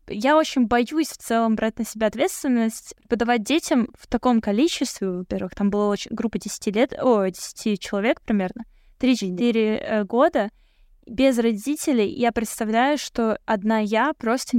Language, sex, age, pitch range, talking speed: Russian, female, 10-29, 215-270 Hz, 145 wpm